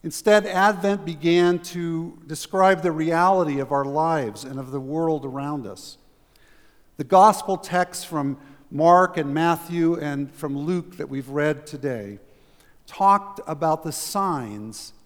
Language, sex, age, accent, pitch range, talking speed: English, male, 50-69, American, 145-185 Hz, 135 wpm